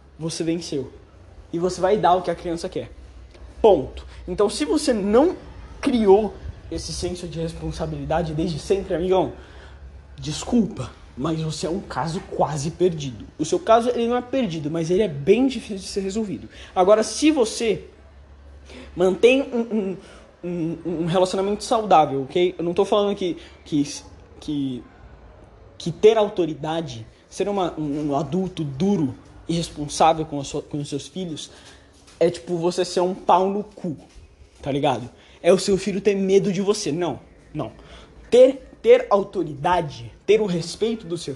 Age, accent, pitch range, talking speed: 20-39, Brazilian, 145-200 Hz, 155 wpm